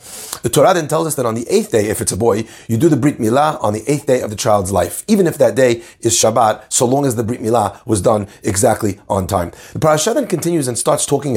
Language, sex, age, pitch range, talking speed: English, male, 30-49, 115-165 Hz, 270 wpm